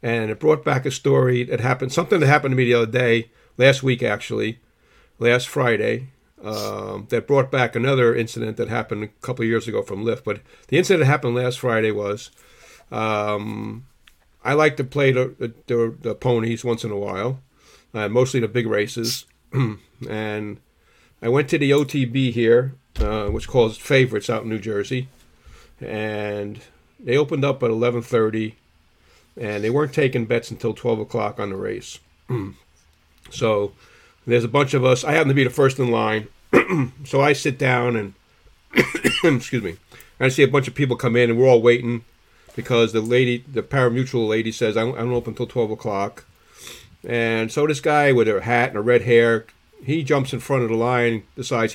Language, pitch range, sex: English, 110-130 Hz, male